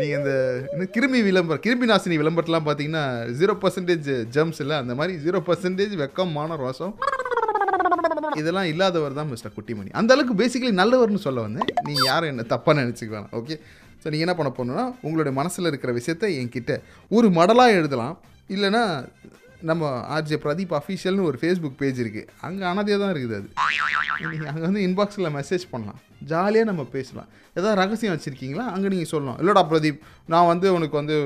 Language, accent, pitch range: Tamil, native, 150-220 Hz